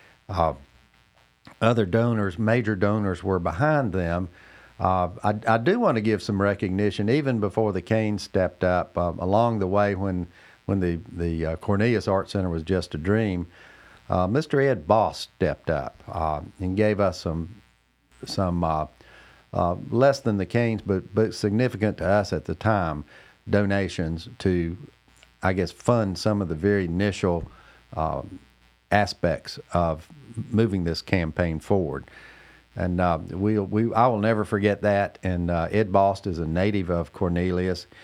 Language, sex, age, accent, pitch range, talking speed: English, male, 50-69, American, 85-105 Hz, 160 wpm